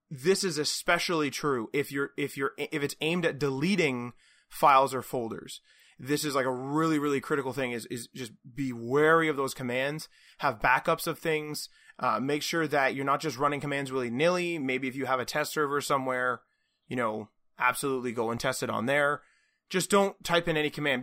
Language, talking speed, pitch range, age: English, 200 wpm, 130-155 Hz, 20-39